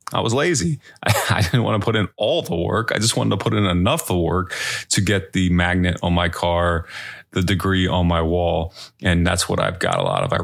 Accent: American